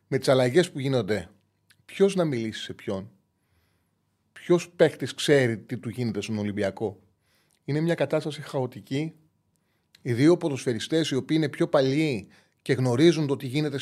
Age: 30-49